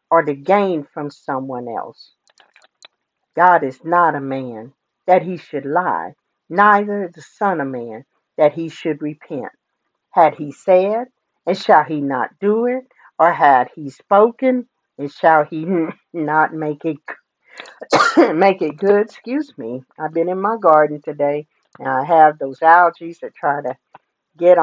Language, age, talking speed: English, 50-69, 155 wpm